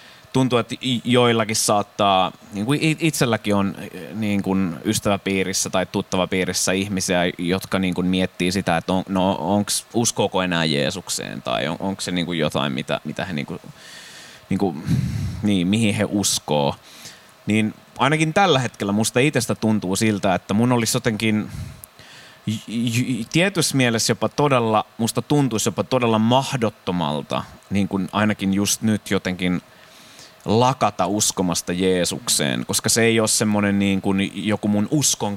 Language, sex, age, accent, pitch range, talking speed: Finnish, male, 20-39, native, 95-115 Hz, 125 wpm